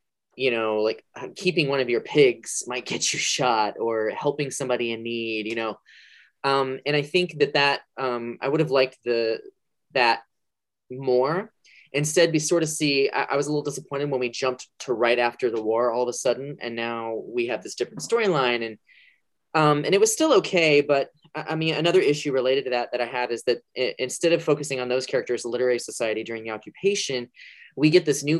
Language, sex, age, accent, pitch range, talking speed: English, male, 20-39, American, 125-165 Hz, 215 wpm